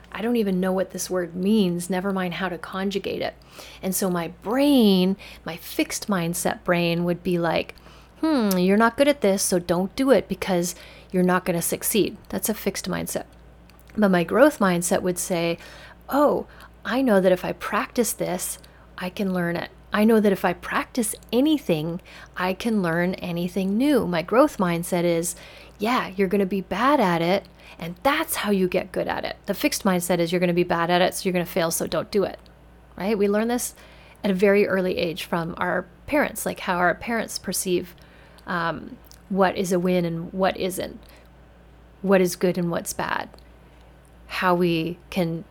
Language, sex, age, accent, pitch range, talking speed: English, female, 30-49, American, 175-200 Hz, 195 wpm